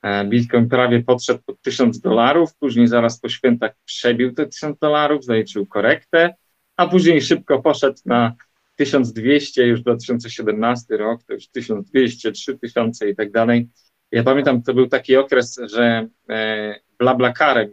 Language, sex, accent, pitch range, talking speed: Polish, male, native, 125-160 Hz, 140 wpm